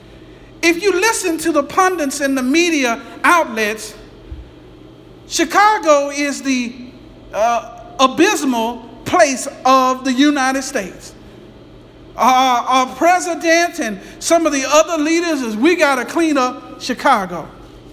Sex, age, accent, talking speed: male, 50-69, American, 120 wpm